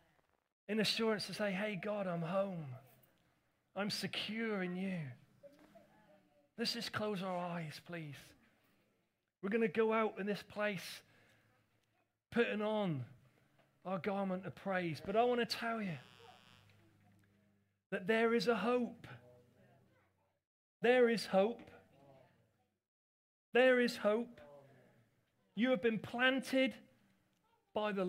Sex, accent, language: male, British, English